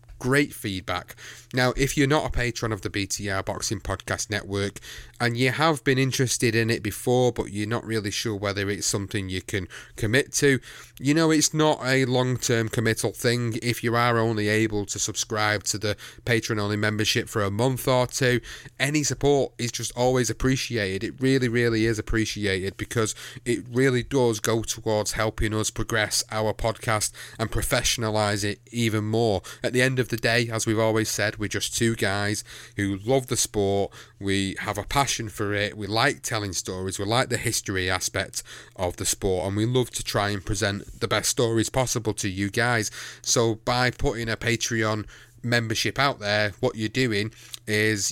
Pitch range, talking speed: 105-120 Hz, 185 wpm